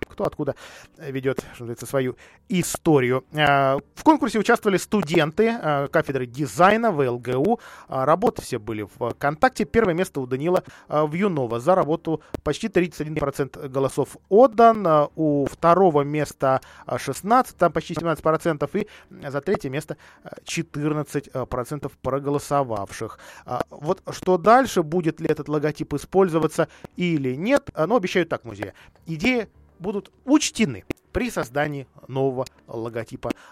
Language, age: Russian, 20-39